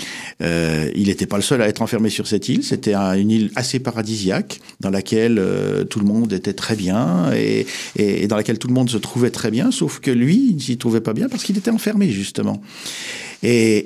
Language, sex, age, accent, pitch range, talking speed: French, male, 50-69, French, 100-125 Hz, 235 wpm